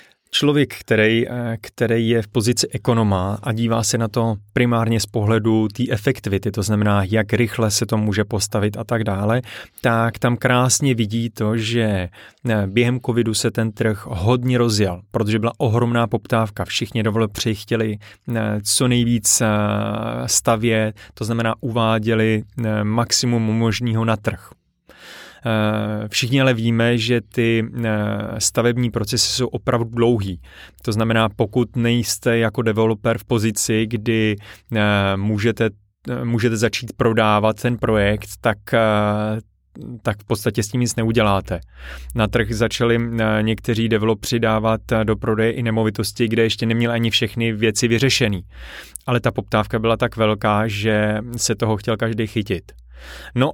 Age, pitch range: 30-49, 105-120 Hz